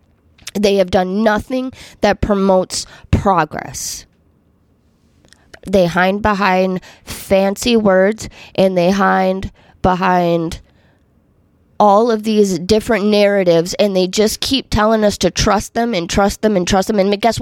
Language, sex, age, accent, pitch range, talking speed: English, female, 20-39, American, 175-220 Hz, 130 wpm